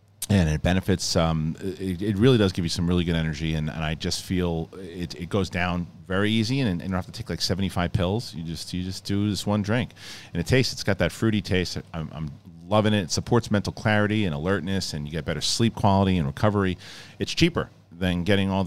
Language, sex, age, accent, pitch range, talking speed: English, male, 40-59, American, 85-105 Hz, 240 wpm